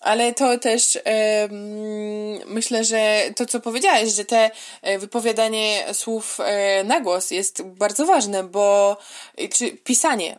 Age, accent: 20-39, native